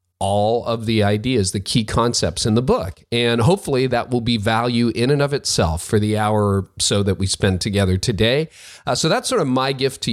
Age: 40-59